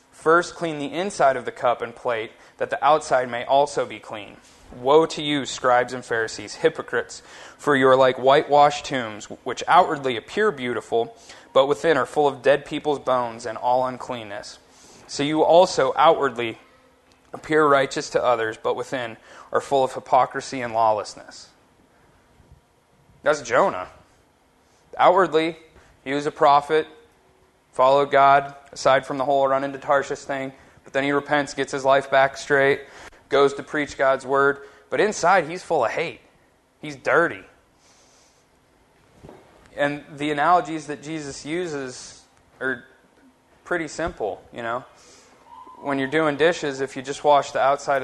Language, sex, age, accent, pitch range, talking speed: English, male, 30-49, American, 130-150 Hz, 150 wpm